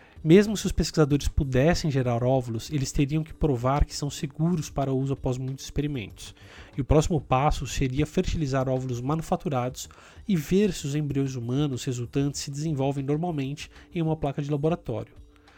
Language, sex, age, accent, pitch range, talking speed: Portuguese, male, 20-39, Brazilian, 125-155 Hz, 165 wpm